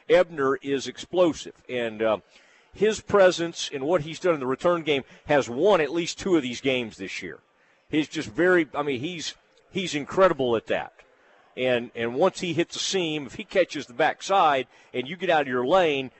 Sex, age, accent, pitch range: male, 50-69, American, 125-165 Hz